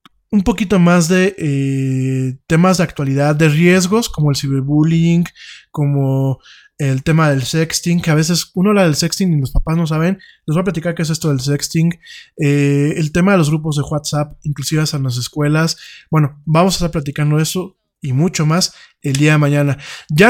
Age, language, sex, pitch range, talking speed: 20-39, Italian, male, 145-180 Hz, 195 wpm